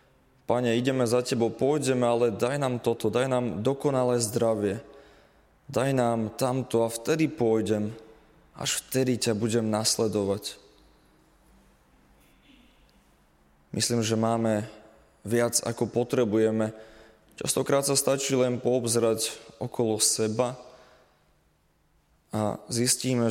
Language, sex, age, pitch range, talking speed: Slovak, male, 20-39, 110-125 Hz, 100 wpm